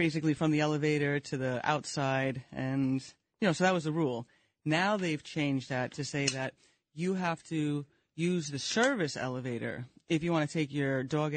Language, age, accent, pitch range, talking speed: English, 30-49, American, 140-165 Hz, 190 wpm